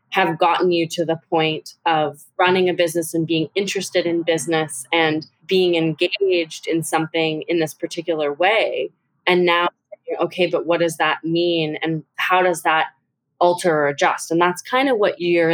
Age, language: 20-39, English